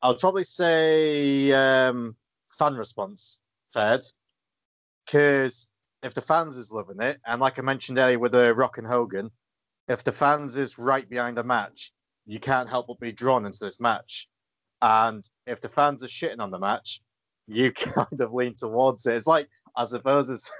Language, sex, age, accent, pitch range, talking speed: English, male, 30-49, British, 115-145 Hz, 180 wpm